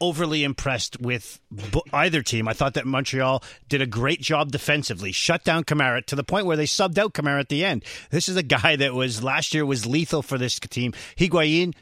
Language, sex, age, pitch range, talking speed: English, male, 40-59, 130-165 Hz, 215 wpm